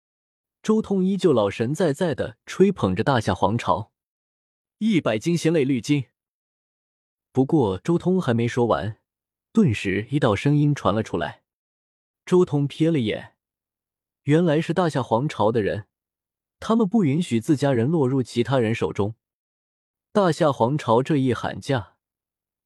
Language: Chinese